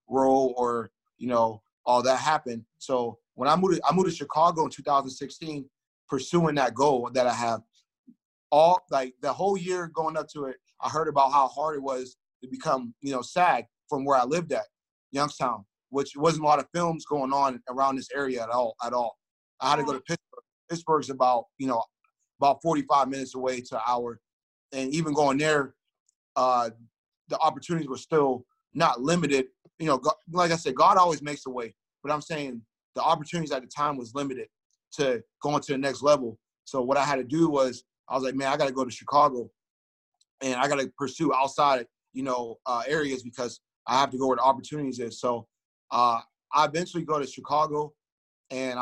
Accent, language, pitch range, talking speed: American, English, 125-155 Hz, 200 wpm